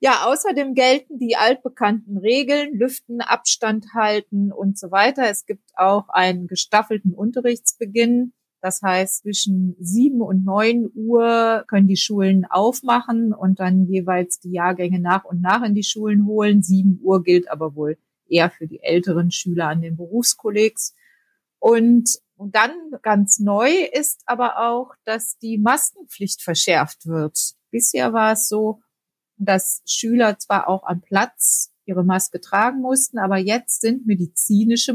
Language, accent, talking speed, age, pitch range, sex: German, German, 145 wpm, 30-49, 180-235 Hz, female